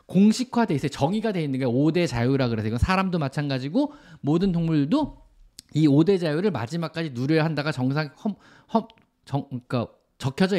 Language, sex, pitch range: Korean, male, 145-235 Hz